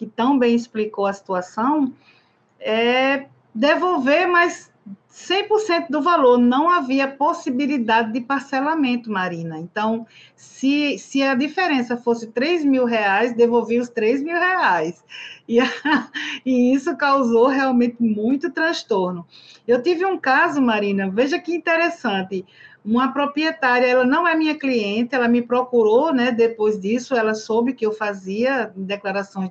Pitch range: 220-320 Hz